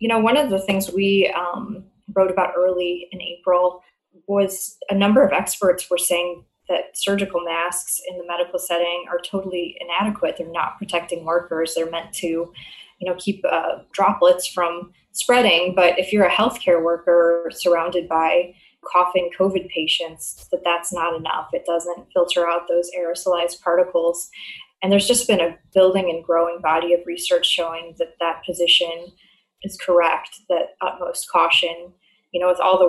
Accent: American